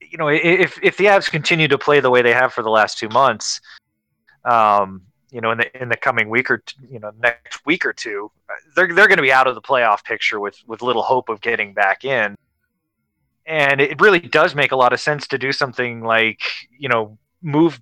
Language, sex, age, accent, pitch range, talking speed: English, male, 20-39, American, 115-145 Hz, 230 wpm